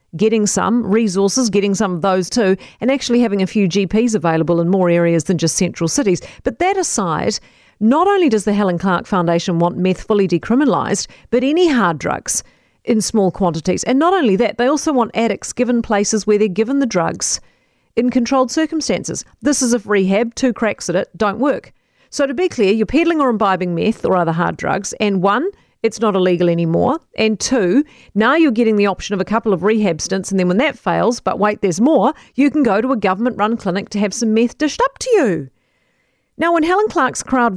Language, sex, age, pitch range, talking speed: English, female, 40-59, 190-255 Hz, 210 wpm